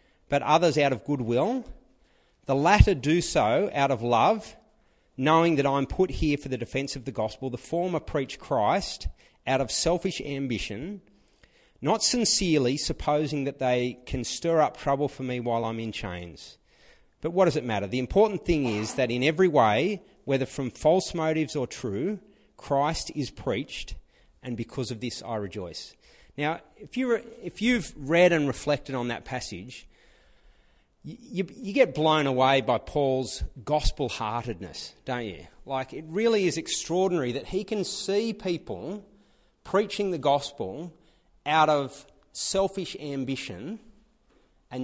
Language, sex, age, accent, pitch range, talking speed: English, male, 30-49, Australian, 125-180 Hz, 155 wpm